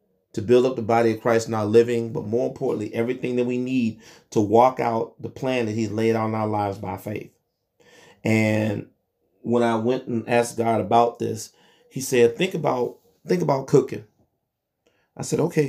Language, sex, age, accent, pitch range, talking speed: English, male, 30-49, American, 115-140 Hz, 190 wpm